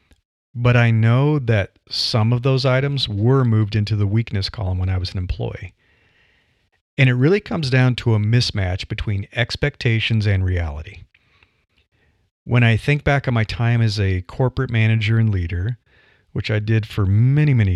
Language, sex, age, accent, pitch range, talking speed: English, male, 40-59, American, 100-120 Hz, 170 wpm